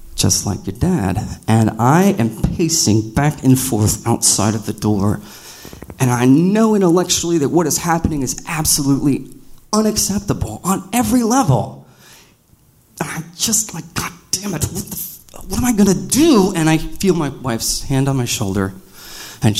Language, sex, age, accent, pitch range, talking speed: English, male, 30-49, American, 105-170 Hz, 165 wpm